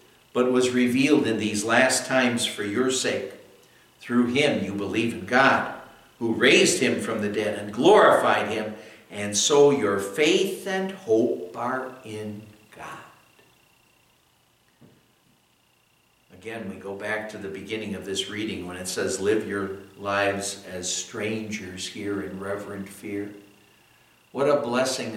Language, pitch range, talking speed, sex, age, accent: English, 105-150 Hz, 140 wpm, male, 60-79, American